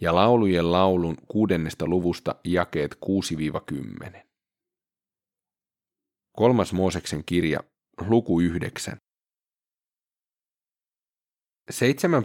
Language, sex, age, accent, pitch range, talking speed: Finnish, male, 30-49, native, 85-105 Hz, 75 wpm